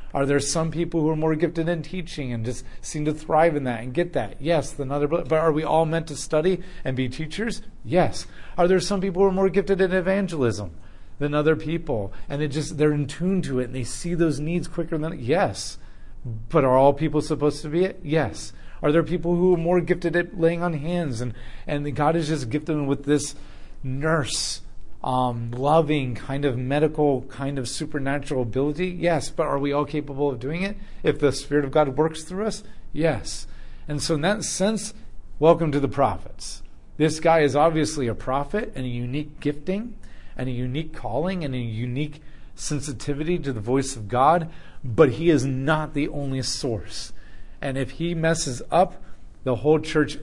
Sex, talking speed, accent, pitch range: male, 200 wpm, American, 130-165 Hz